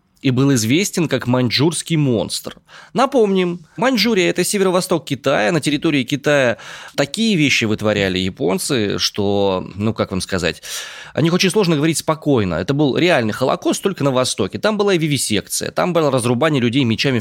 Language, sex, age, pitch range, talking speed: Russian, male, 20-39, 110-150 Hz, 155 wpm